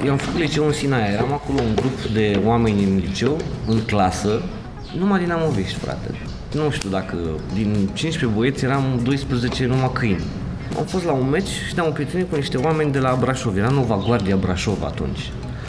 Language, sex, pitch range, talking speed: Romanian, male, 100-150 Hz, 185 wpm